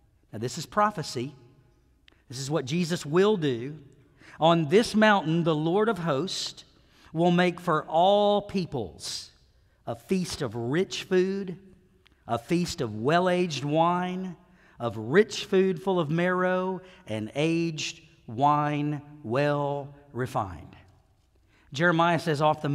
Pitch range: 130-180 Hz